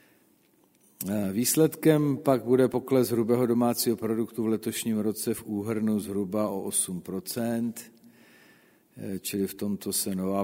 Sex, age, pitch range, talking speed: male, 50-69, 95-120 Hz, 115 wpm